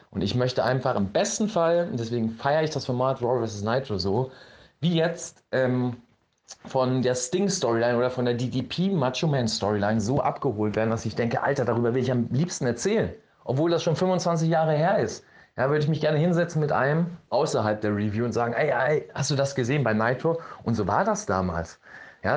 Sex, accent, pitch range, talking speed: male, German, 110-140 Hz, 200 wpm